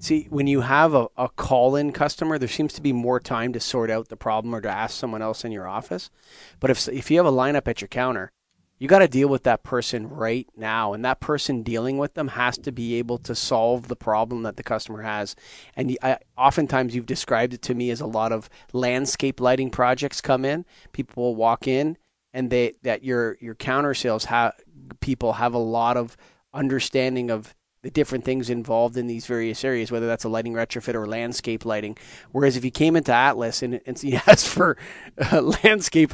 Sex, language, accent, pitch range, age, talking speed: male, English, American, 115-140 Hz, 30-49, 215 wpm